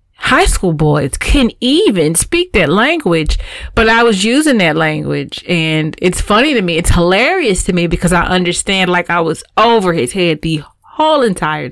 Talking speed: 180 wpm